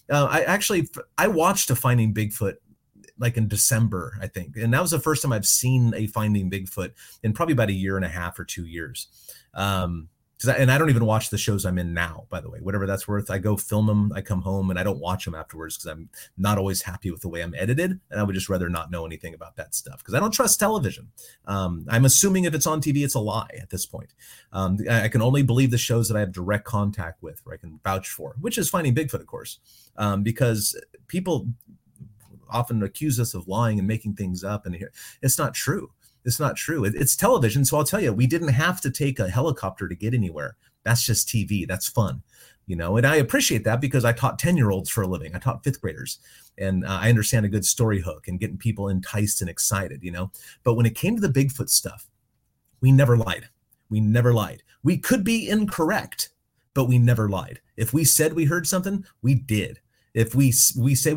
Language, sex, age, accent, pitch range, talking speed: English, male, 30-49, American, 100-135 Hz, 230 wpm